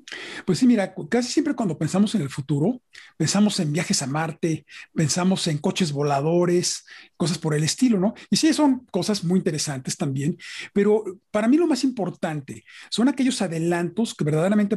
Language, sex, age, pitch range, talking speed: Spanish, male, 40-59, 165-220 Hz, 170 wpm